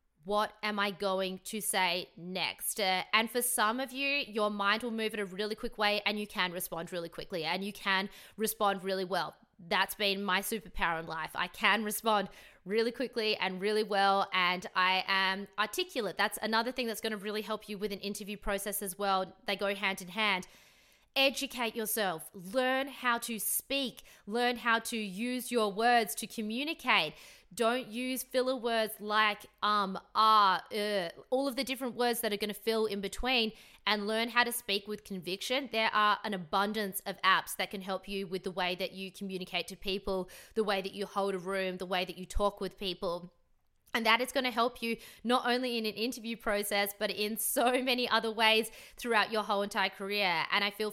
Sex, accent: female, Australian